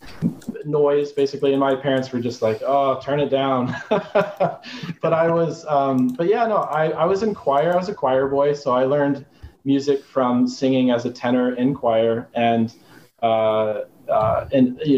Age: 20-39